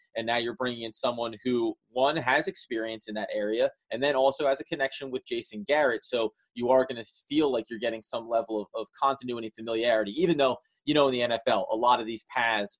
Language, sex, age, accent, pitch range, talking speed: English, male, 30-49, American, 115-145 Hz, 235 wpm